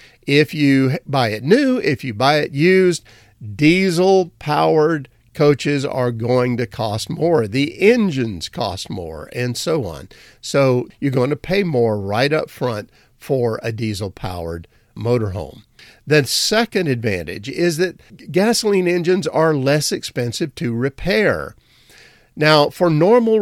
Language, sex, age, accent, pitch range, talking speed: English, male, 50-69, American, 115-175 Hz, 135 wpm